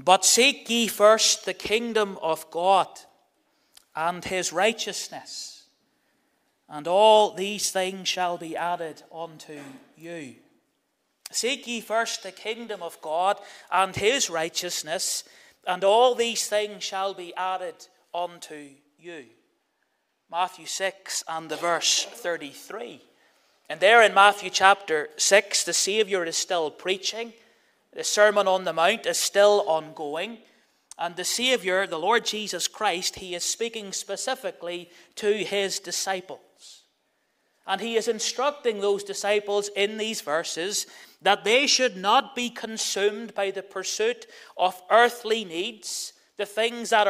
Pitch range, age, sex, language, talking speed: 180-220 Hz, 30-49, male, English, 130 wpm